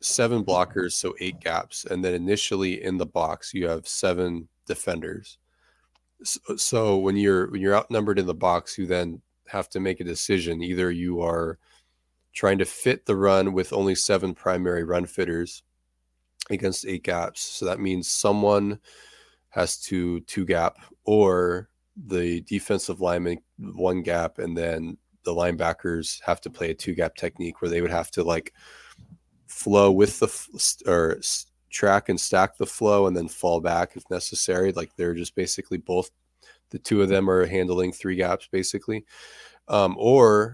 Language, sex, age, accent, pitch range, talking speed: English, male, 20-39, American, 85-95 Hz, 165 wpm